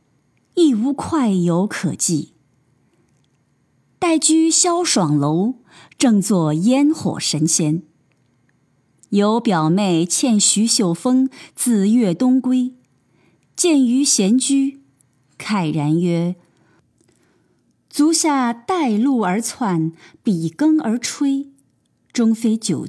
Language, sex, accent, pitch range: Chinese, female, native, 170-270 Hz